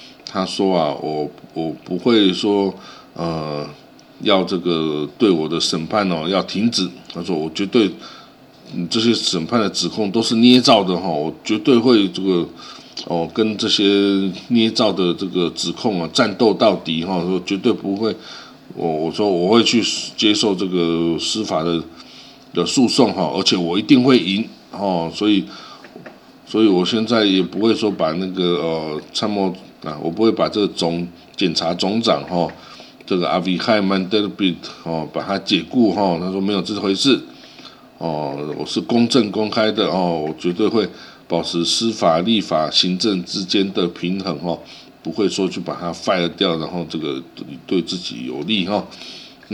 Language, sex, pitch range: Chinese, male, 85-105 Hz